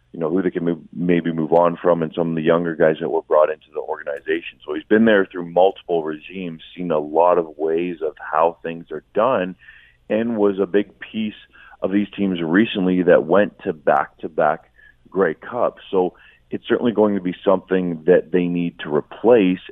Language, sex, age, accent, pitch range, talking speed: English, male, 30-49, American, 80-95 Hz, 200 wpm